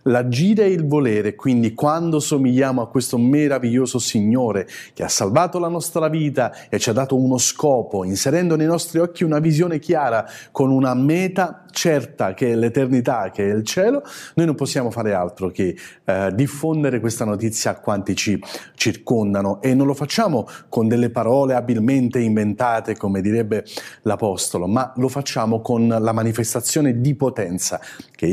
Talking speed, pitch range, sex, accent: 160 wpm, 115-150 Hz, male, native